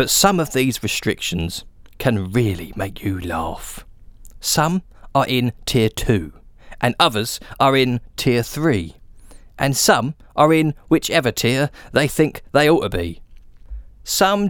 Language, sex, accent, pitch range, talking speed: English, male, British, 100-155 Hz, 140 wpm